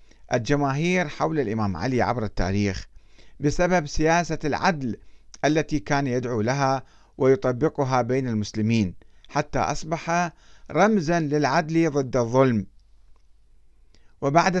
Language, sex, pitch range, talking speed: Arabic, male, 120-170 Hz, 95 wpm